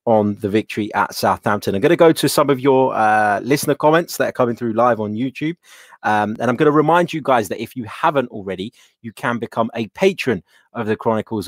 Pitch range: 100-120 Hz